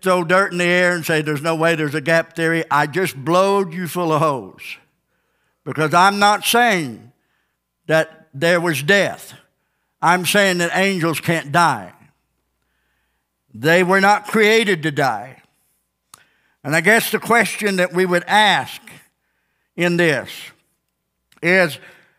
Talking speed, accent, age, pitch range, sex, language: 145 wpm, American, 60-79, 150-195 Hz, male, English